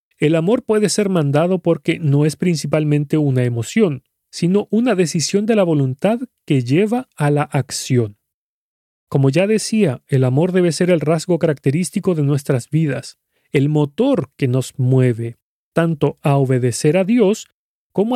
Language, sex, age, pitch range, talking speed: Spanish, male, 40-59, 135-195 Hz, 150 wpm